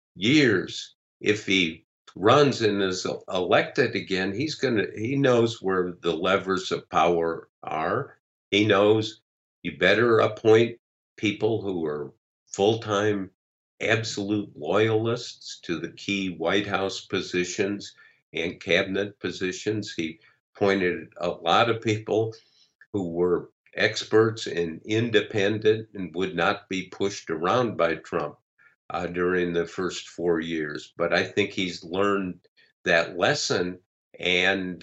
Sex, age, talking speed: male, 50-69, 120 wpm